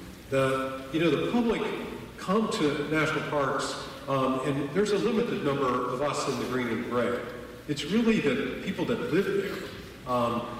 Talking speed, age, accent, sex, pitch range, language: 170 wpm, 50-69, American, male, 120-170 Hz, English